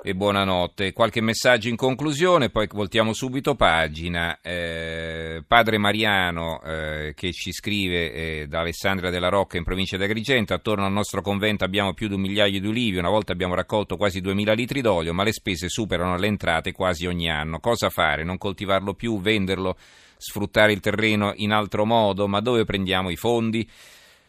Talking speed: 175 wpm